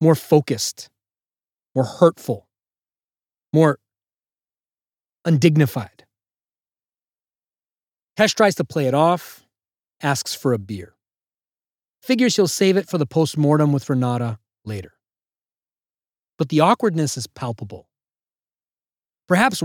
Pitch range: 115-170 Hz